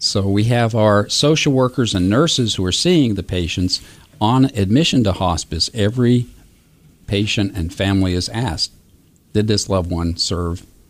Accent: American